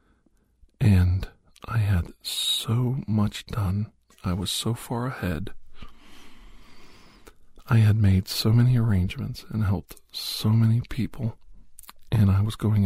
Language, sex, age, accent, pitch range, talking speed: English, male, 50-69, American, 100-115 Hz, 120 wpm